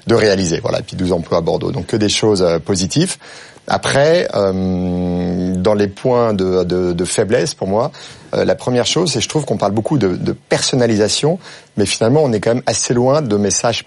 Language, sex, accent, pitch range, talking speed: French, male, French, 95-120 Hz, 210 wpm